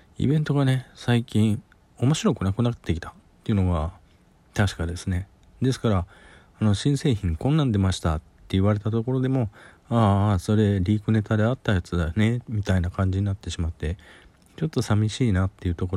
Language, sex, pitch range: Japanese, male, 90-125 Hz